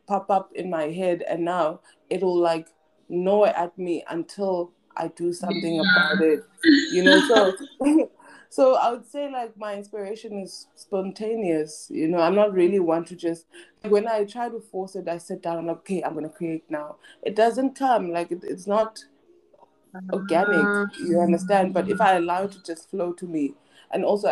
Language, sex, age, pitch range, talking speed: English, female, 20-39, 165-210 Hz, 190 wpm